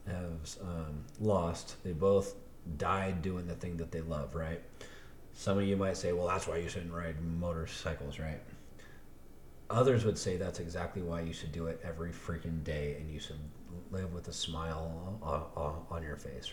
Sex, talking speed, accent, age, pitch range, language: male, 185 wpm, American, 30-49, 80-100 Hz, English